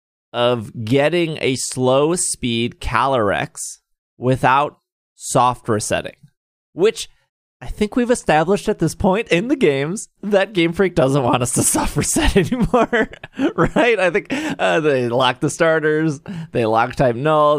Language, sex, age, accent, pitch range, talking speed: English, male, 30-49, American, 120-160 Hz, 135 wpm